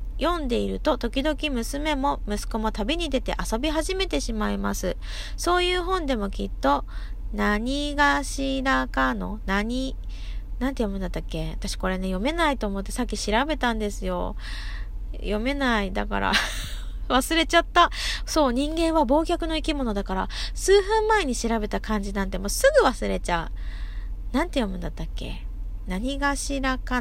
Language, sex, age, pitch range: Japanese, female, 20-39, 190-305 Hz